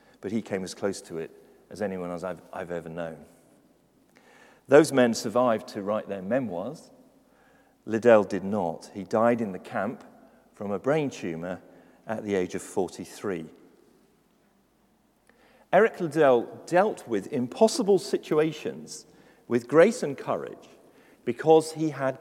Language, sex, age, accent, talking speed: English, male, 40-59, British, 140 wpm